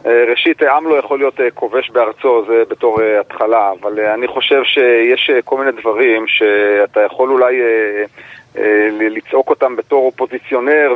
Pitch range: 120-205 Hz